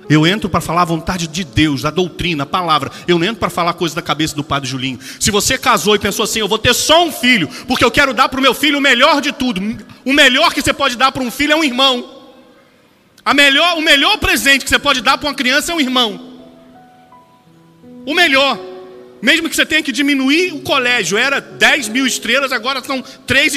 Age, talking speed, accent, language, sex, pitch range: 40-59, 230 wpm, Brazilian, Portuguese, male, 195-275 Hz